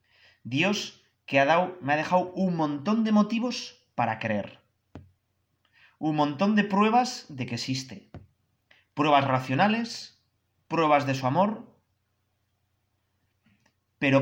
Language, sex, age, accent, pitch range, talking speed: Spanish, male, 30-49, Spanish, 110-185 Hz, 105 wpm